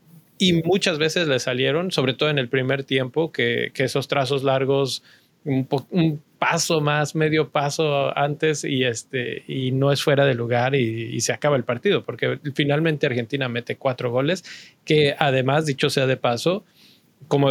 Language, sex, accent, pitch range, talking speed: Spanish, male, Mexican, 130-155 Hz, 175 wpm